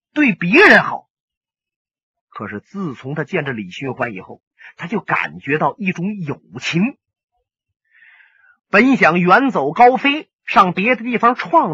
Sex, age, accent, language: male, 30-49, native, Chinese